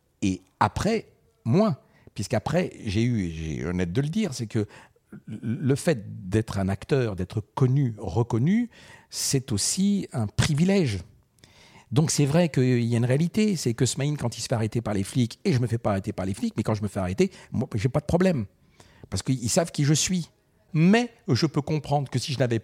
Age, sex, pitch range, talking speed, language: 60-79, male, 100-140 Hz, 210 wpm, French